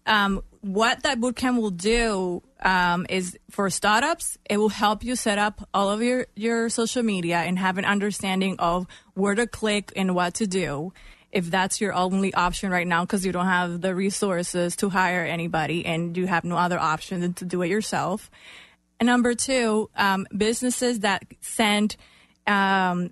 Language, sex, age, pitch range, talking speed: English, female, 20-39, 185-220 Hz, 180 wpm